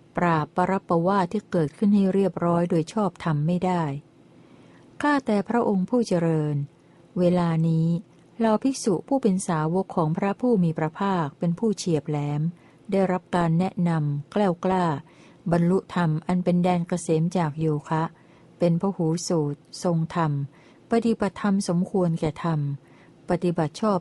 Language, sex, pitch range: Thai, female, 160-190 Hz